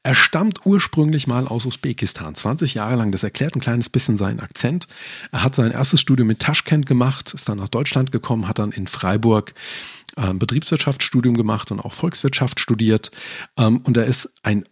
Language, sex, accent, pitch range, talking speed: German, male, German, 105-135 Hz, 180 wpm